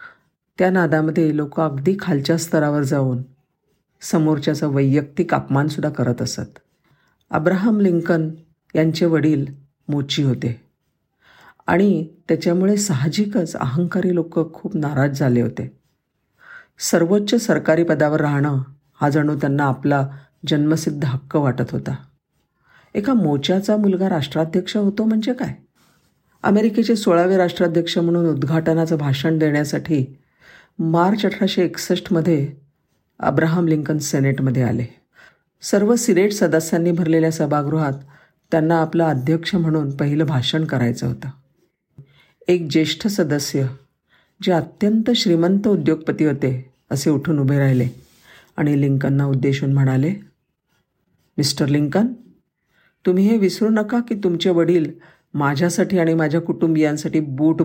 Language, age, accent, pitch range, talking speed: Marathi, 50-69, native, 140-180 Hz, 100 wpm